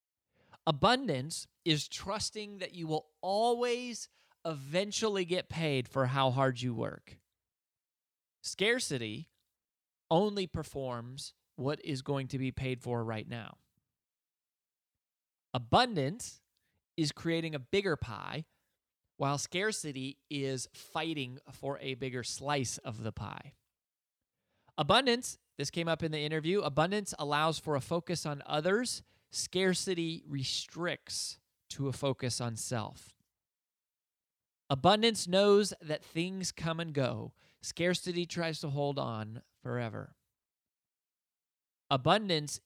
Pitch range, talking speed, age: 125-165 Hz, 110 wpm, 20-39